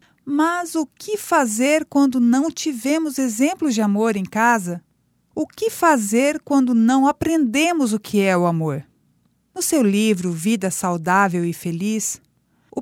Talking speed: 145 wpm